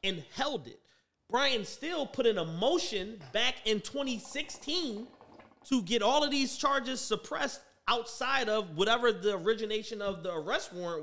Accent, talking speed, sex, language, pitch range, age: American, 150 wpm, male, English, 205-270 Hz, 30-49